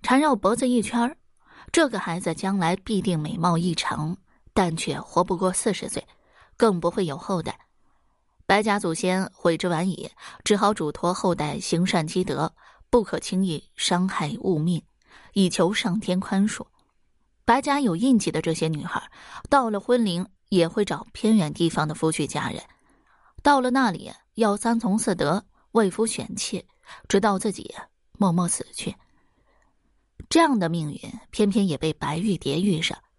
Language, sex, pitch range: Chinese, female, 175-225 Hz